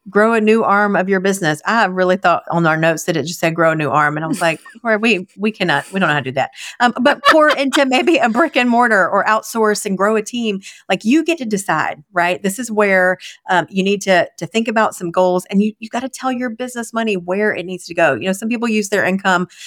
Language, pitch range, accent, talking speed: English, 180-215 Hz, American, 270 wpm